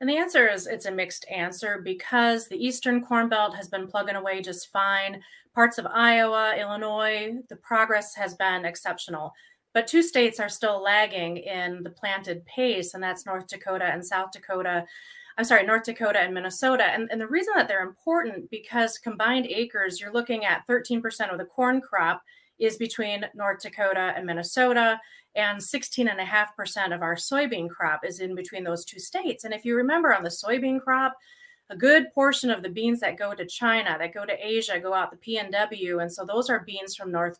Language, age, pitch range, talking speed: English, 30-49, 190-240 Hz, 200 wpm